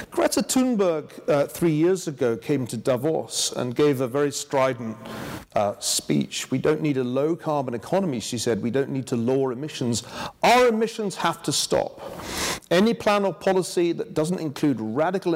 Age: 40-59